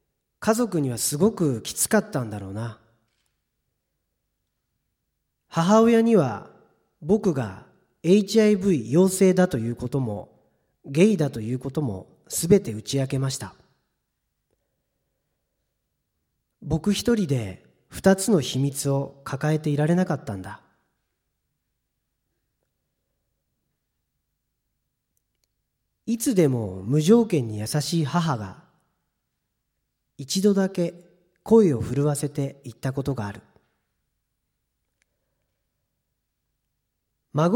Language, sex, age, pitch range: Japanese, male, 40-59, 125-190 Hz